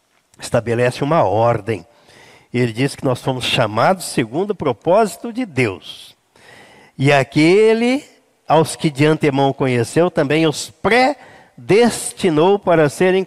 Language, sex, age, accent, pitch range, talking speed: Portuguese, male, 50-69, Brazilian, 135-185 Hz, 120 wpm